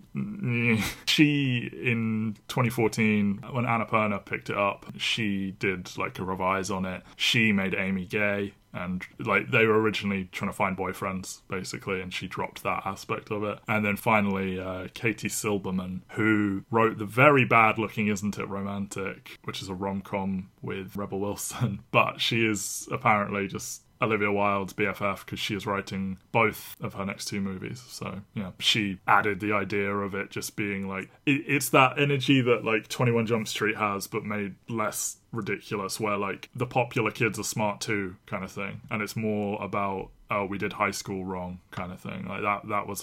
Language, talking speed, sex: English, 180 wpm, male